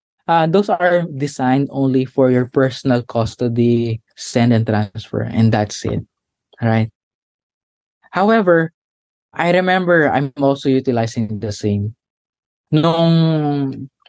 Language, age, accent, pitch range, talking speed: Filipino, 20-39, native, 120-170 Hz, 110 wpm